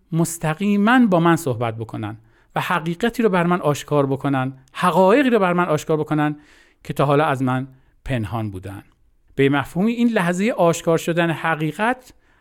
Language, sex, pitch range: Persian, male, 120-170 Hz